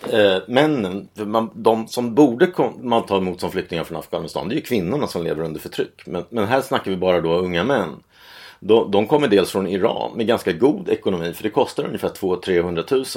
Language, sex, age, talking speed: Swedish, male, 30-49, 215 wpm